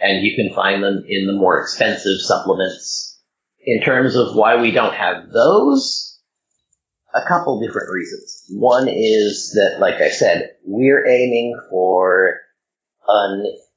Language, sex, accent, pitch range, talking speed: English, male, American, 95-135 Hz, 140 wpm